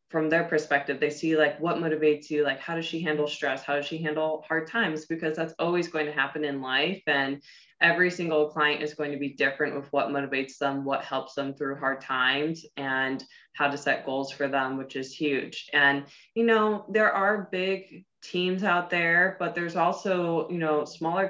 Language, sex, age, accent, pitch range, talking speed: English, female, 20-39, American, 145-170 Hz, 205 wpm